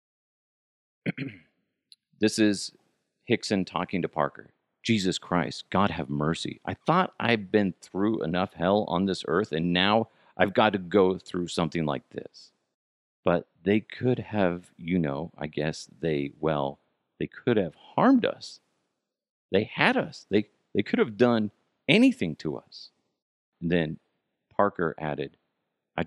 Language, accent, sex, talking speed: English, American, male, 145 wpm